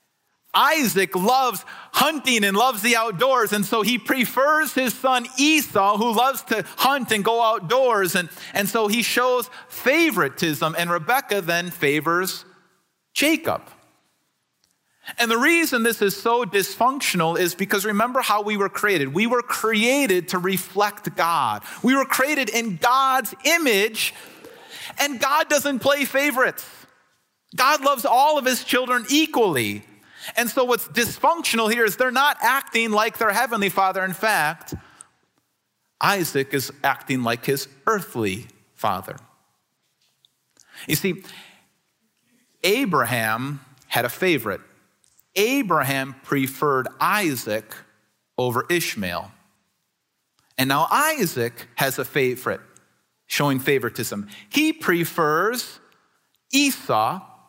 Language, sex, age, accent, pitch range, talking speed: English, male, 40-59, American, 165-260 Hz, 120 wpm